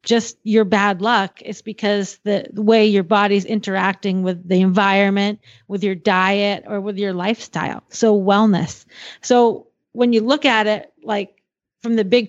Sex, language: female, English